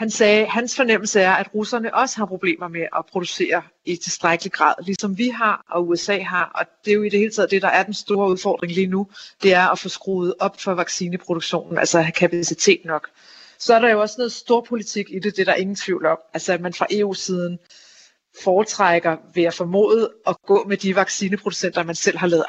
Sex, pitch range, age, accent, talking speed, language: female, 175-205 Hz, 40-59, native, 225 wpm, Danish